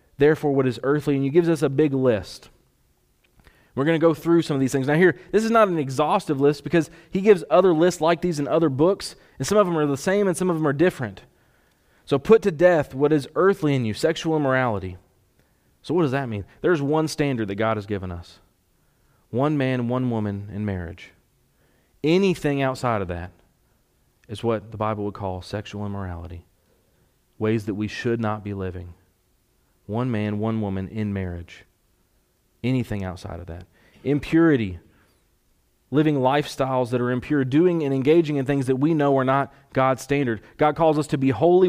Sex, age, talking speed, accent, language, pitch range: male, 30-49, 195 wpm, American, English, 105-155 Hz